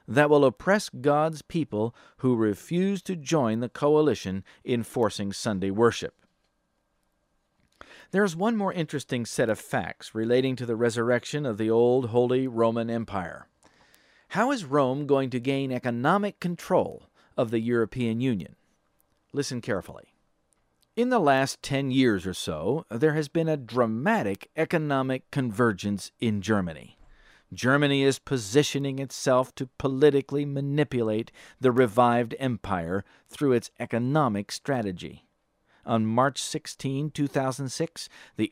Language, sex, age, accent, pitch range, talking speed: English, male, 50-69, American, 115-150 Hz, 125 wpm